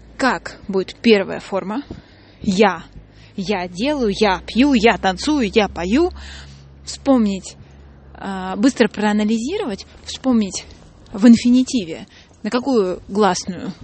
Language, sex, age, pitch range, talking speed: Russian, female, 20-39, 200-260 Hz, 95 wpm